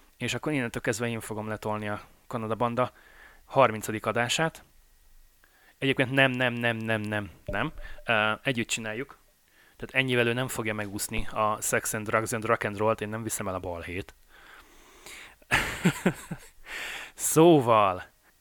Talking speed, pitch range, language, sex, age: 140 wpm, 110-130 Hz, Hungarian, male, 20-39